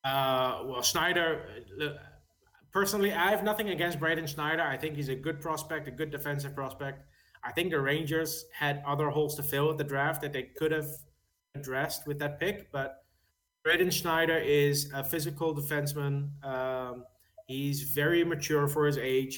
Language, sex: English, male